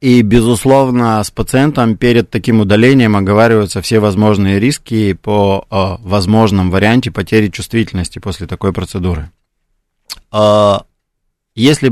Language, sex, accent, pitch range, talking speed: Russian, male, native, 95-115 Hz, 100 wpm